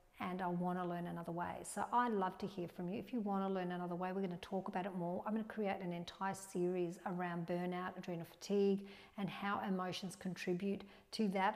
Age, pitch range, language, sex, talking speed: 50-69, 180-220 Hz, English, female, 215 wpm